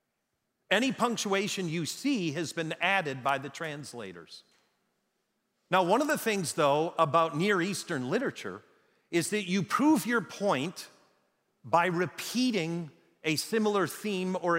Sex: male